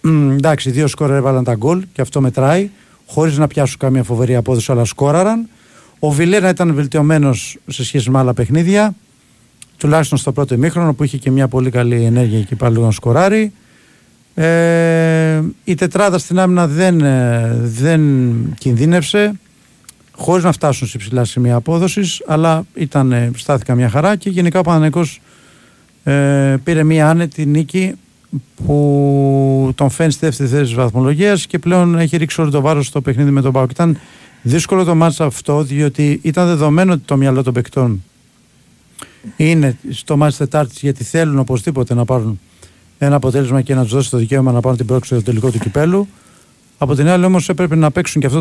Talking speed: 165 wpm